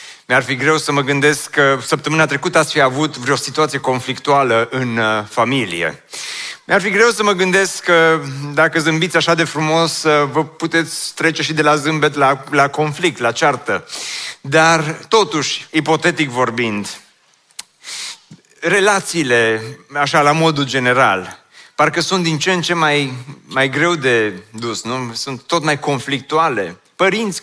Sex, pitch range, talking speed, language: male, 140-175 Hz, 145 wpm, Romanian